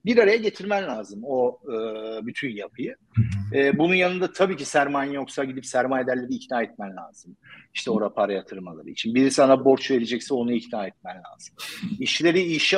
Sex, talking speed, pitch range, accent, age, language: male, 165 wpm, 125-180 Hz, native, 50-69, Turkish